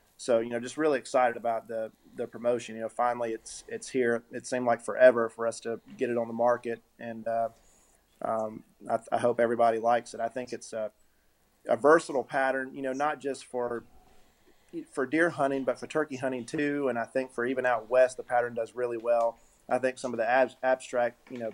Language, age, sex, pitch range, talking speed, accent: English, 30-49, male, 115-130 Hz, 215 wpm, American